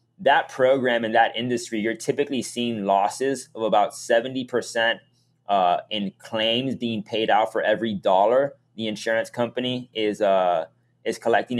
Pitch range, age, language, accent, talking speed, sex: 110-125 Hz, 20-39, English, American, 145 wpm, male